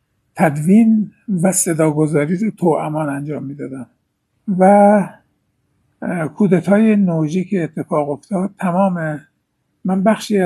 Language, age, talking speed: Persian, 60-79, 90 wpm